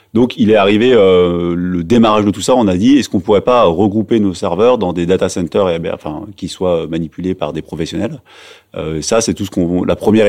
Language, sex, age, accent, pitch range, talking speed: French, male, 30-49, French, 90-105 Hz, 235 wpm